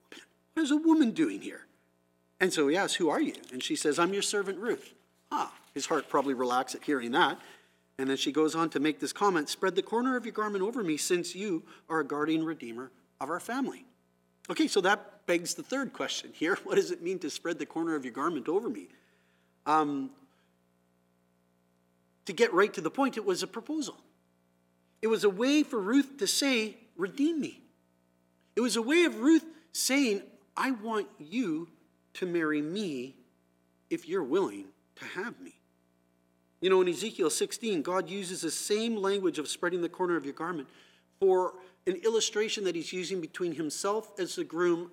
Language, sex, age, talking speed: English, male, 40-59, 190 wpm